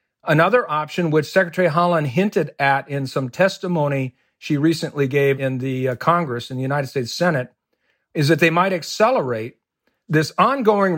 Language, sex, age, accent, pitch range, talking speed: English, male, 50-69, American, 135-170 Hz, 160 wpm